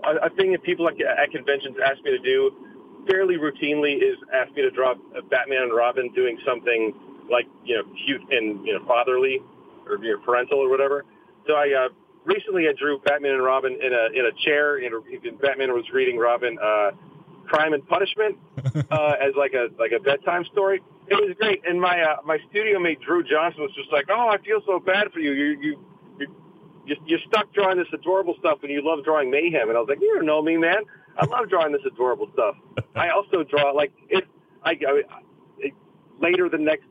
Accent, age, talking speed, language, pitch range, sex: American, 40-59, 210 wpm, English, 145-245 Hz, male